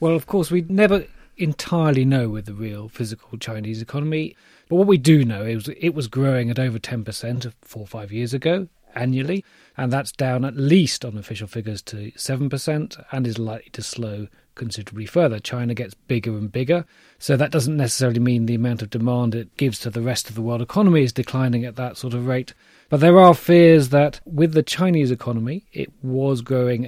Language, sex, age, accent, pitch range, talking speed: English, male, 40-59, British, 115-140 Hz, 200 wpm